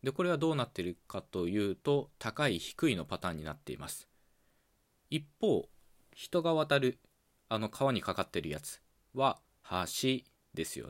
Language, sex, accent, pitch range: Japanese, male, native, 90-135 Hz